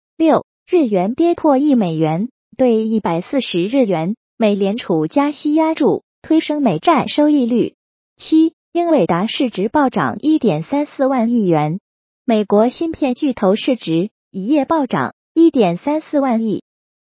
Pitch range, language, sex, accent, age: 205-305 Hz, Chinese, female, native, 20-39